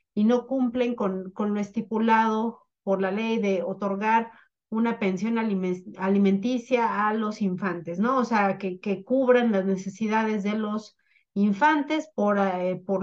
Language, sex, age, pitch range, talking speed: Spanish, female, 40-59, 195-240 Hz, 145 wpm